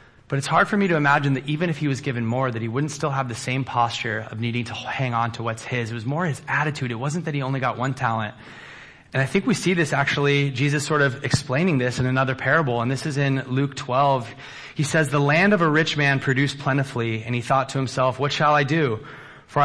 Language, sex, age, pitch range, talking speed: English, male, 20-39, 115-140 Hz, 255 wpm